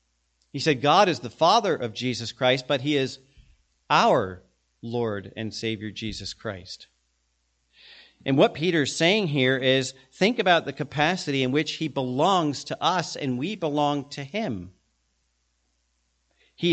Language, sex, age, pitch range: English, male, 40-59, 115-175 Hz